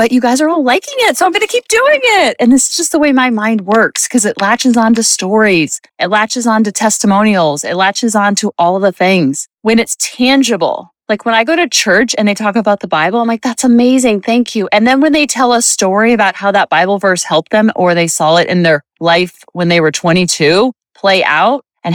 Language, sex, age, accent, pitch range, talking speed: English, female, 30-49, American, 185-255 Hz, 250 wpm